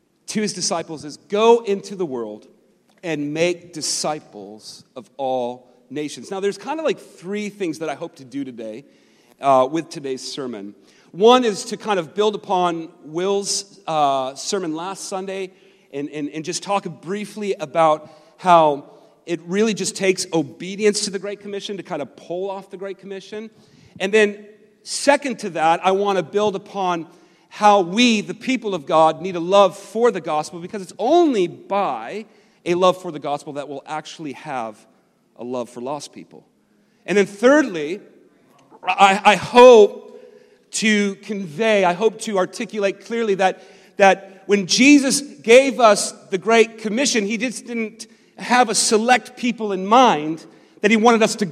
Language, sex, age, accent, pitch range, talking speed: English, male, 40-59, American, 170-215 Hz, 170 wpm